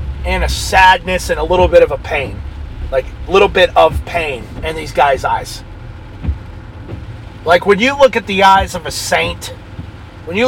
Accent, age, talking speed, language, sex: American, 40-59, 185 wpm, English, male